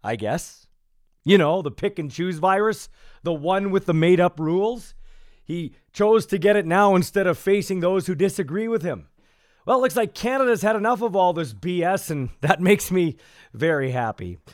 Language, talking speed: English, 195 wpm